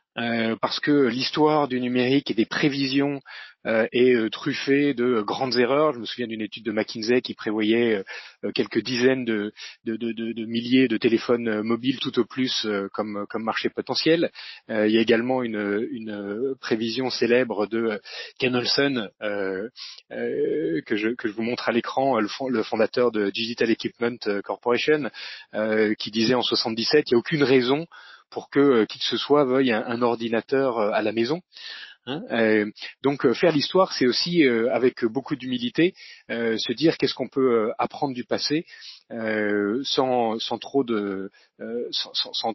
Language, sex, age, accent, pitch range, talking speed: French, male, 30-49, French, 110-140 Hz, 155 wpm